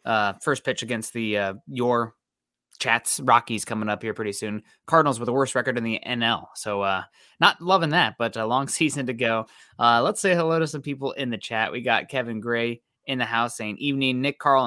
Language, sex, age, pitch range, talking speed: English, male, 20-39, 115-140 Hz, 220 wpm